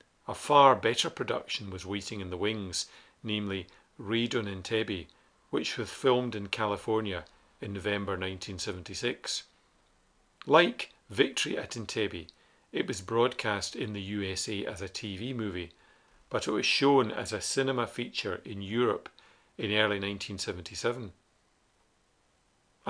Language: English